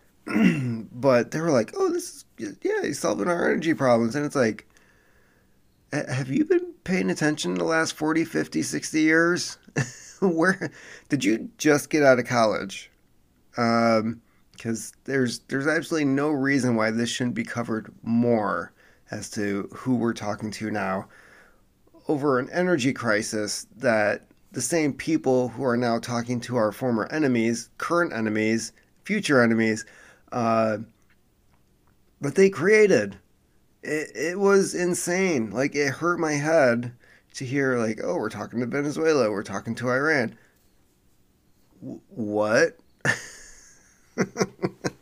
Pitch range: 110-155 Hz